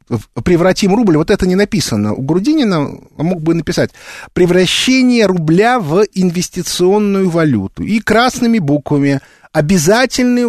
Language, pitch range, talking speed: Russian, 150-215 Hz, 115 wpm